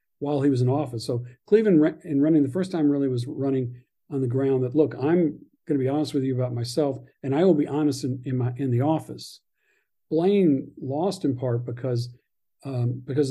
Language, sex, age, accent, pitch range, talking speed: English, male, 50-69, American, 125-165 Hz, 205 wpm